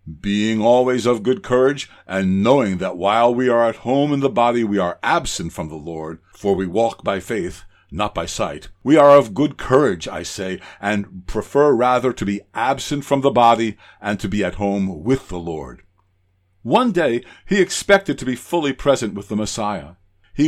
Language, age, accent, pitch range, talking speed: English, 60-79, American, 95-140 Hz, 195 wpm